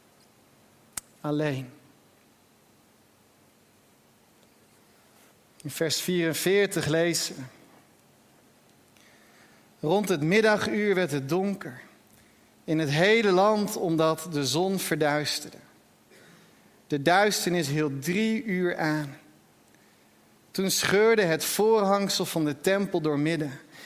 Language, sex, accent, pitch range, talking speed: Dutch, male, Dutch, 150-200 Hz, 85 wpm